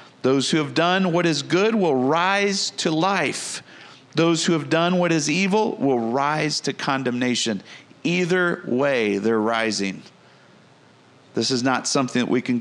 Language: English